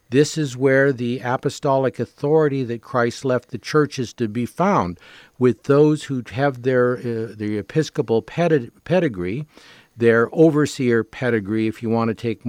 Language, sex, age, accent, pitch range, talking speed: English, male, 50-69, American, 120-155 Hz, 160 wpm